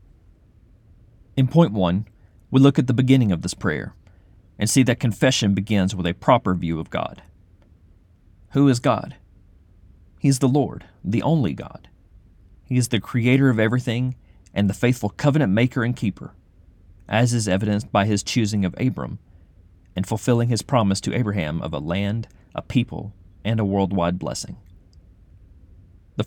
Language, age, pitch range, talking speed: English, 40-59, 90-120 Hz, 160 wpm